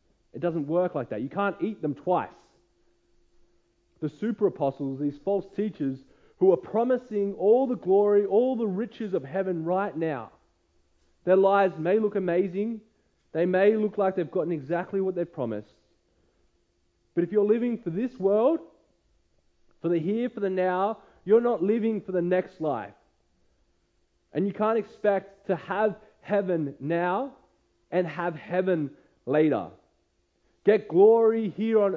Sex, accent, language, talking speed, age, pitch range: male, Australian, English, 150 wpm, 30-49, 140-205 Hz